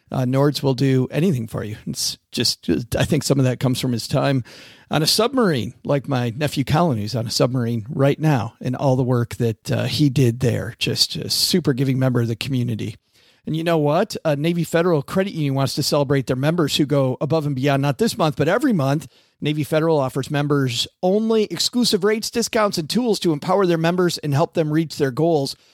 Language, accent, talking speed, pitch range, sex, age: English, American, 220 wpm, 135-165 Hz, male, 40-59